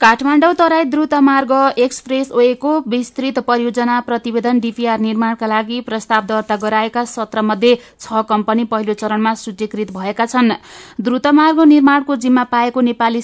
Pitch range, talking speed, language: 225-255 Hz, 120 wpm, German